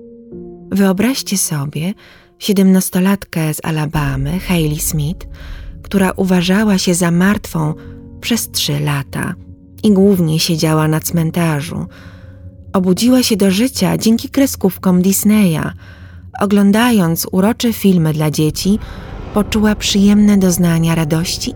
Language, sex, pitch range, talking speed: Polish, female, 145-190 Hz, 100 wpm